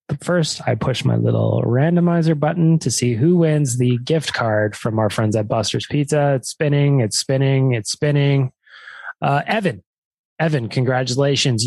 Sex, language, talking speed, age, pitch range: male, English, 155 wpm, 20-39, 125-165 Hz